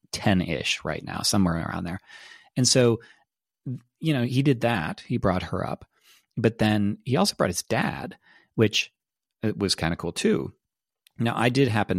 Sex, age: male, 30-49